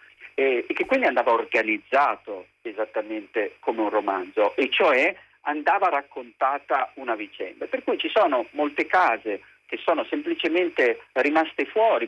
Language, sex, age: Italian, male, 50-69